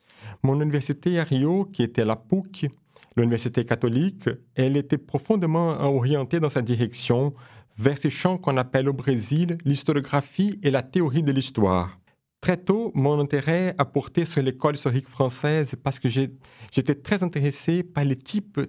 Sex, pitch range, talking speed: male, 125-165 Hz, 155 wpm